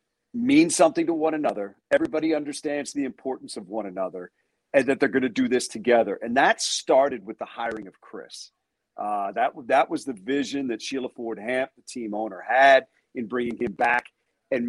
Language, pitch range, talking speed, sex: English, 115-140 Hz, 190 wpm, male